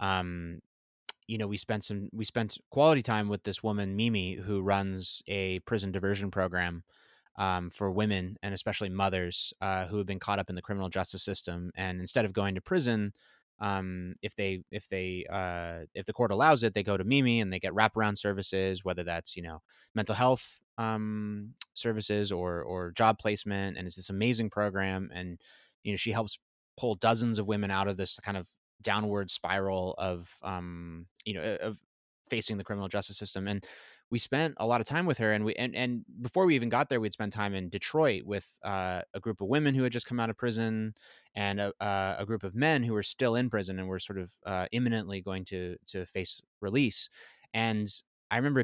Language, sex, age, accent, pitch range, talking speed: English, male, 20-39, American, 95-115 Hz, 205 wpm